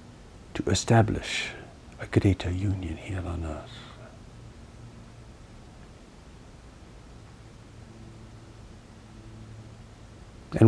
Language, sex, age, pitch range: English, male, 60-79, 95-110 Hz